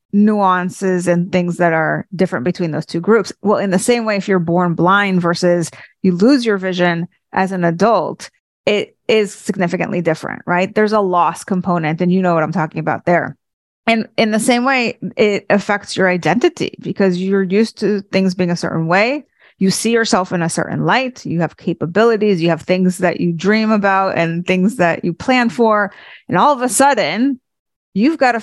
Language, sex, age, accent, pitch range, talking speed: English, female, 30-49, American, 180-220 Hz, 195 wpm